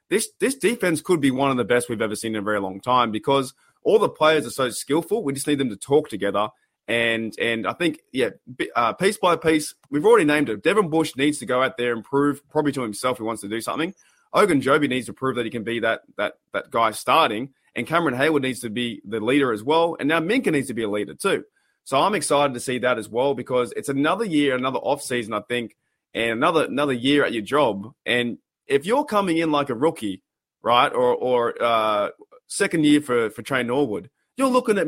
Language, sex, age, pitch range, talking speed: English, male, 20-39, 120-155 Hz, 235 wpm